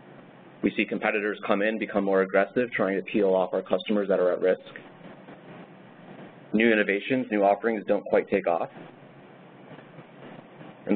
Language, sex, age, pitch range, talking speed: English, male, 30-49, 100-135 Hz, 150 wpm